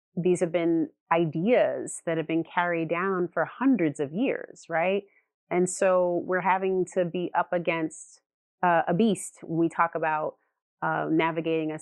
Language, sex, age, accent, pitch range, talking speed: English, female, 30-49, American, 160-180 Hz, 155 wpm